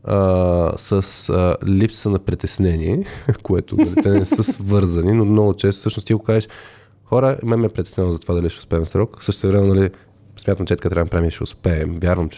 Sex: male